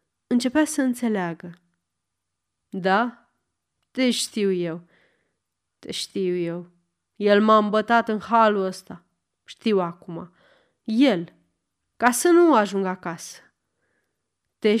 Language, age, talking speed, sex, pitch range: Romanian, 20-39, 100 wpm, female, 180-245 Hz